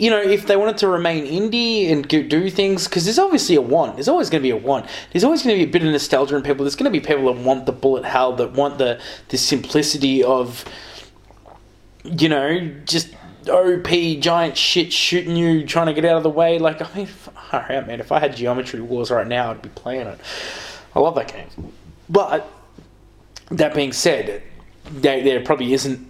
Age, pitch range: 20-39, 120-165 Hz